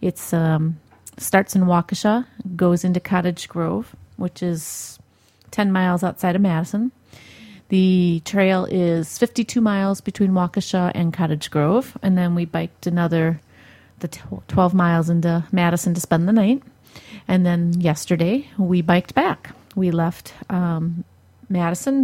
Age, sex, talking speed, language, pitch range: 30-49, female, 135 wpm, English, 165-210 Hz